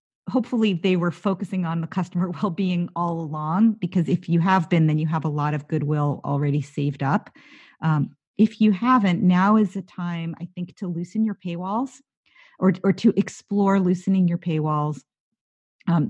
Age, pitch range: 40-59, 170-195 Hz